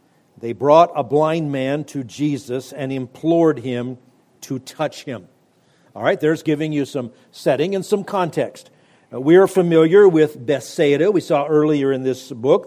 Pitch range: 130-175 Hz